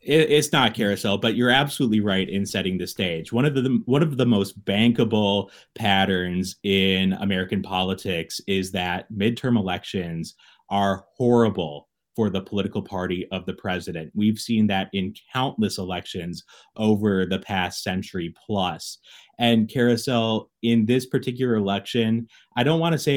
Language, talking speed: English, 145 wpm